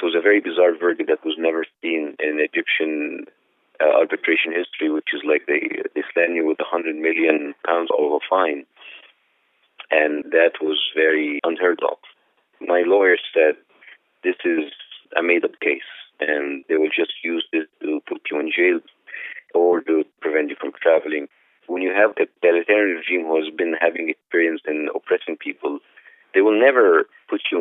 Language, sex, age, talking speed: English, male, 40-59, 170 wpm